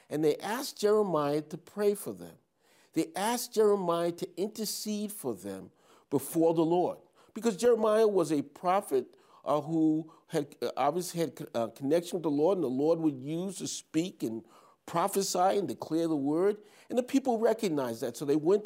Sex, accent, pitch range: male, American, 150-210 Hz